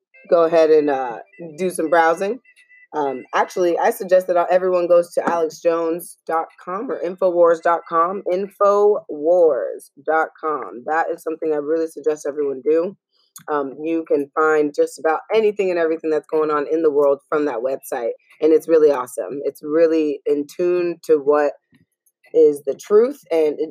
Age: 20-39